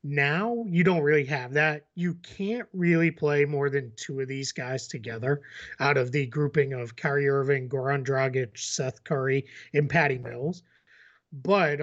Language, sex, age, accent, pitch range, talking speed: English, male, 30-49, American, 130-170 Hz, 160 wpm